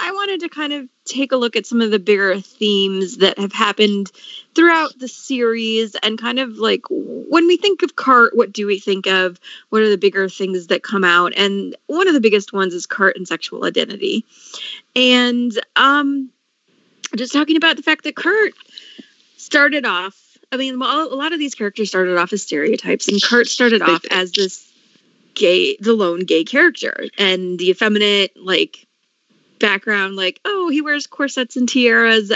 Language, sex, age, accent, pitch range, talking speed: English, female, 30-49, American, 195-285 Hz, 185 wpm